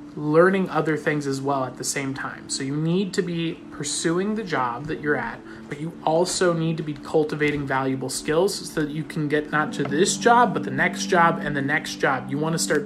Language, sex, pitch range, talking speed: English, male, 140-170 Hz, 235 wpm